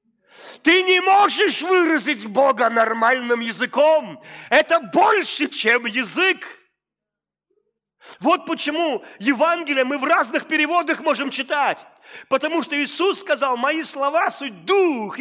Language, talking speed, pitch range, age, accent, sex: Russian, 110 wpm, 265-330 Hz, 40-59, native, male